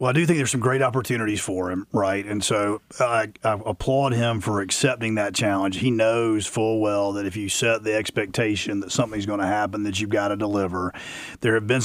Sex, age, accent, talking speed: male, 40-59, American, 225 wpm